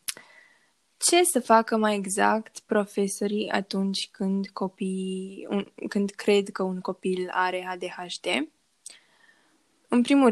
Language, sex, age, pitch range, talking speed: Romanian, female, 10-29, 190-220 Hz, 110 wpm